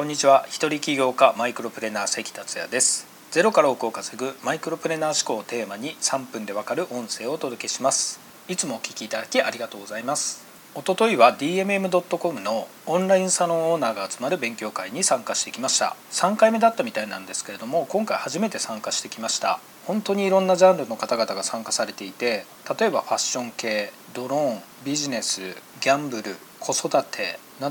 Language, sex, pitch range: Japanese, male, 135-195 Hz